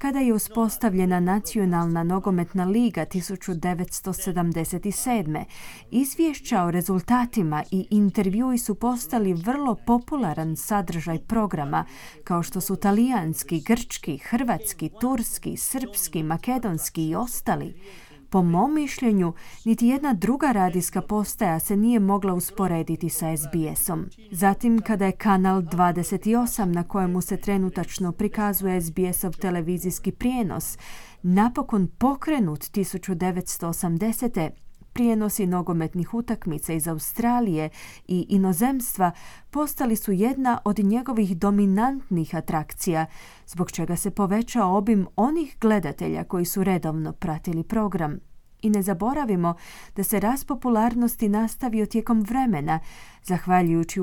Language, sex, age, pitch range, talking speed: Croatian, female, 30-49, 175-230 Hz, 105 wpm